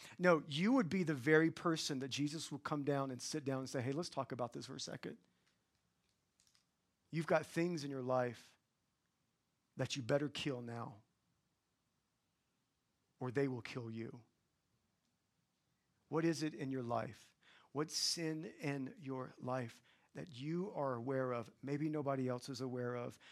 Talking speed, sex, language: 160 wpm, male, English